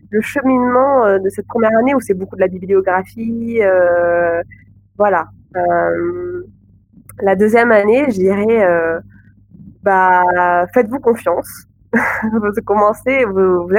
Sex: female